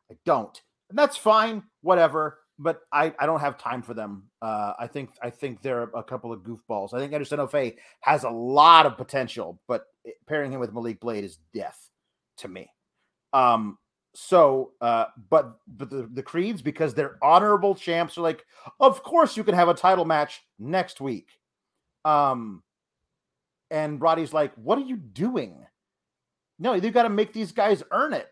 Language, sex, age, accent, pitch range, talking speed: English, male, 30-49, American, 135-195 Hz, 175 wpm